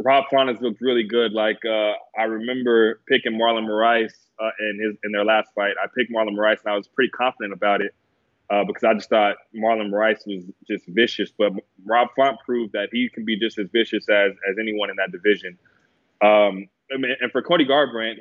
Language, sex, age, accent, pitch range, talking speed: English, male, 20-39, American, 110-130 Hz, 210 wpm